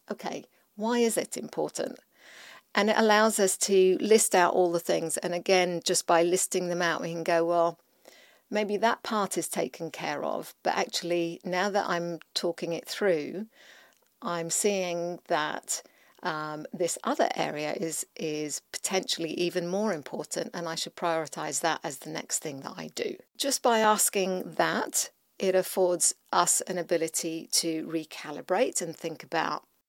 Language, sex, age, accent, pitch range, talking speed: English, female, 50-69, British, 165-195 Hz, 160 wpm